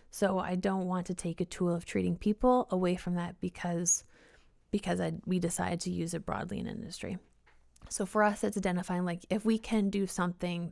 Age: 20-39